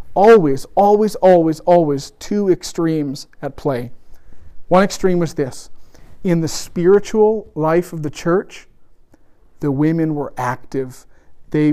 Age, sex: 40-59, male